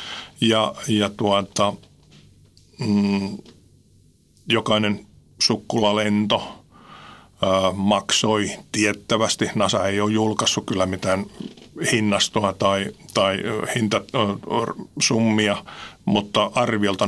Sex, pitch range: male, 95-110 Hz